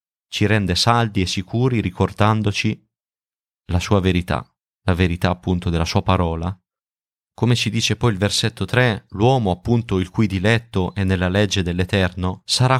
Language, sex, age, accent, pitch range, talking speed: Italian, male, 30-49, native, 95-115 Hz, 150 wpm